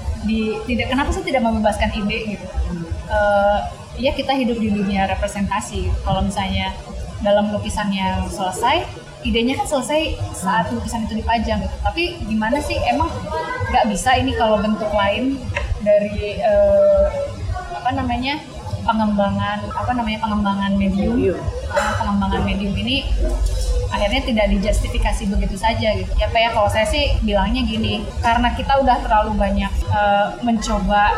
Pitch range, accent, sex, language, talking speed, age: 205-245 Hz, native, female, Indonesian, 140 wpm, 20-39